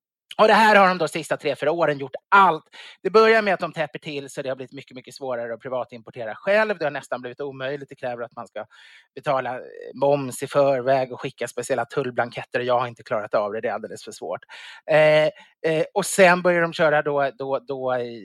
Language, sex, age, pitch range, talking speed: English, male, 30-49, 130-175 Hz, 235 wpm